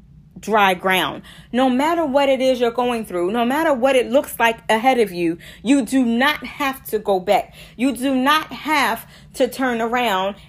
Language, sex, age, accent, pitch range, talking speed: English, female, 40-59, American, 210-290 Hz, 190 wpm